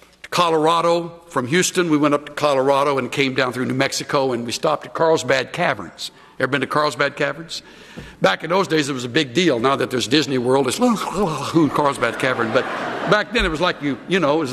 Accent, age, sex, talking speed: American, 60-79, male, 215 wpm